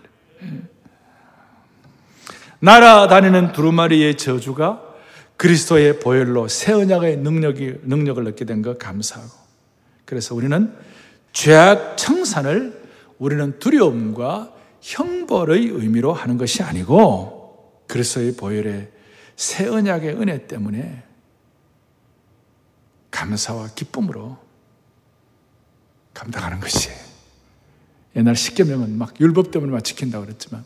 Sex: male